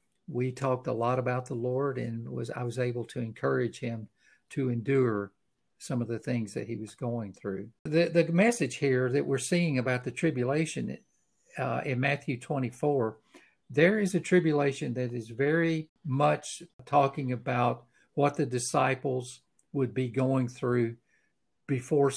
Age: 50-69